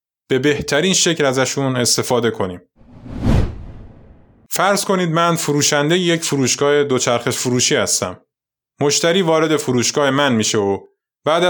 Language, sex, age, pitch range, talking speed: Persian, male, 20-39, 125-165 Hz, 115 wpm